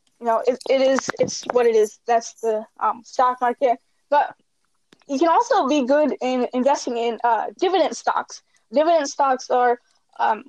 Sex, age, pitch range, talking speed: female, 10-29, 235-290 Hz, 170 wpm